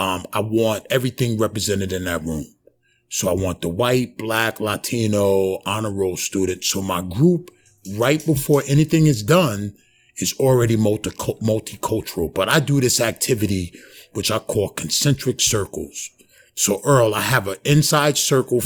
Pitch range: 100-135 Hz